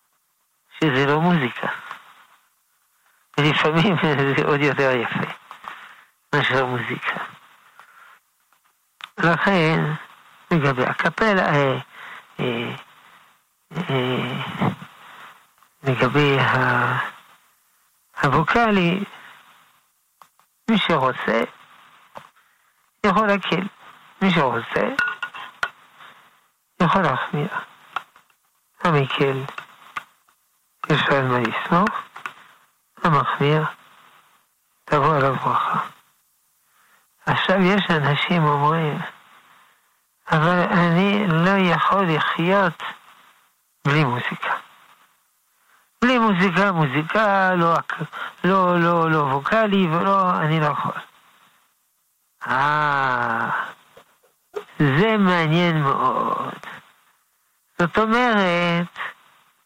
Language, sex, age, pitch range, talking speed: Hebrew, male, 60-79, 145-195 Hz, 55 wpm